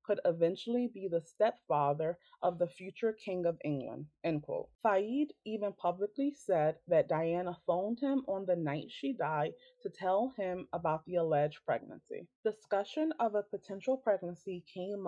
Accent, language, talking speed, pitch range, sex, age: American, English, 155 wpm, 165-225 Hz, female, 30-49